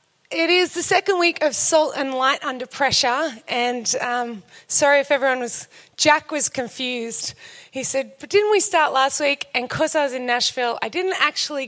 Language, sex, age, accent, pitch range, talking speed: English, female, 20-39, Australian, 250-310 Hz, 190 wpm